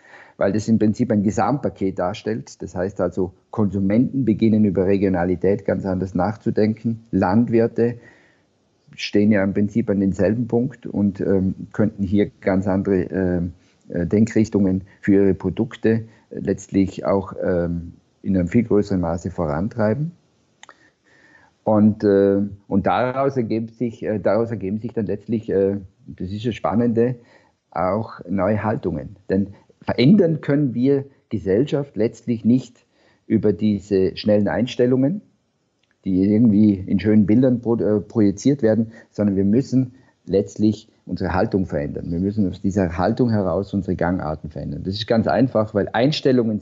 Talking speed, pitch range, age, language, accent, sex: 135 wpm, 95-115 Hz, 50-69, German, German, male